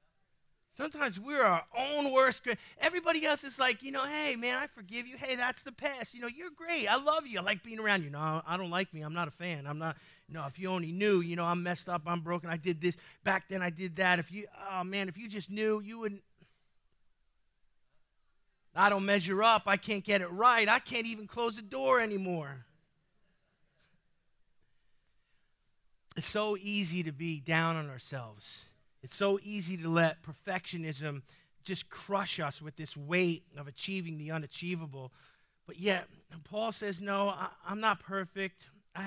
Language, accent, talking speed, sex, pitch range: English, American, 190 wpm, male, 170-215 Hz